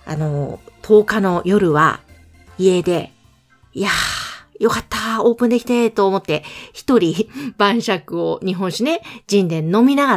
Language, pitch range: Japanese, 170-235 Hz